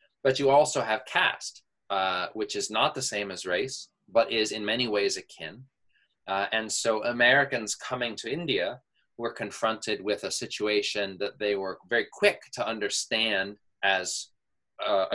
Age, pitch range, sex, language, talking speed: 20-39, 100-135 Hz, male, English, 160 wpm